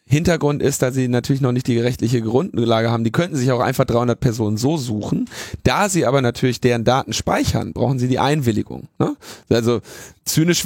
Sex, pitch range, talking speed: male, 110-130 Hz, 190 wpm